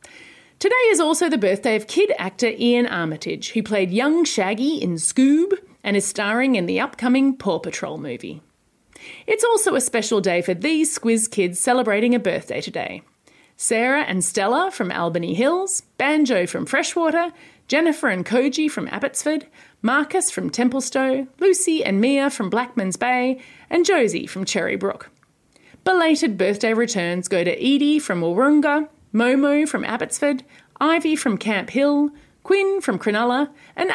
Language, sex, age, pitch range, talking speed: English, female, 30-49, 210-310 Hz, 150 wpm